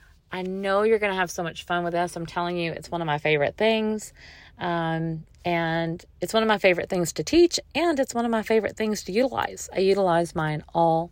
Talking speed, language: 230 wpm, English